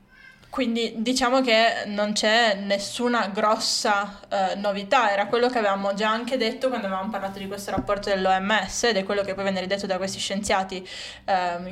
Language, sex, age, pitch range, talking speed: Italian, female, 20-39, 195-225 Hz, 175 wpm